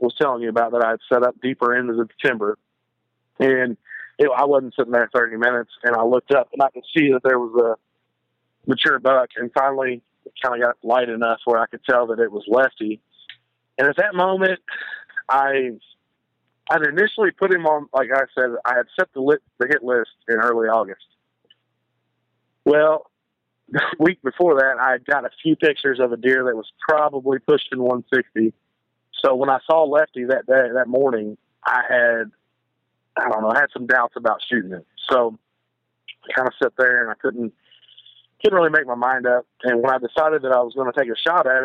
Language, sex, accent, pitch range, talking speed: English, male, American, 115-135 Hz, 205 wpm